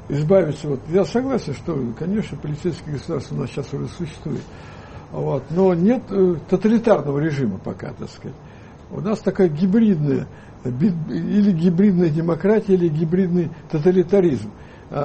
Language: Russian